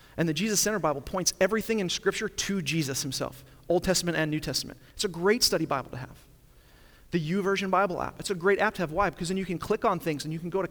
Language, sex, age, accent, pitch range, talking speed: English, male, 40-59, American, 145-185 Hz, 265 wpm